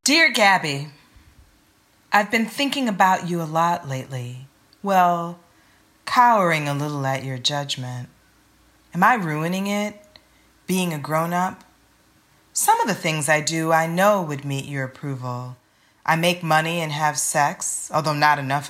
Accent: American